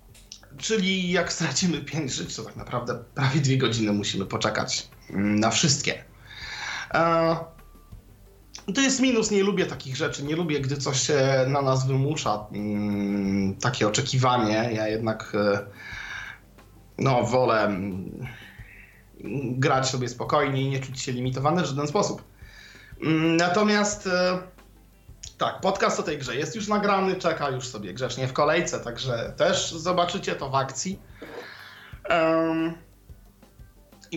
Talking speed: 120 wpm